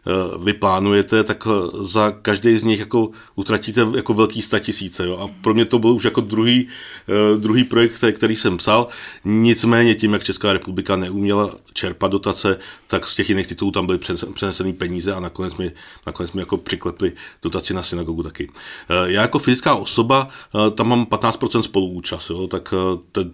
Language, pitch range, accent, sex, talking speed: Czech, 90-105 Hz, native, male, 165 wpm